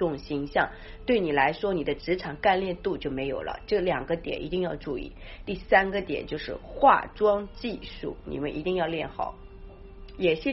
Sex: female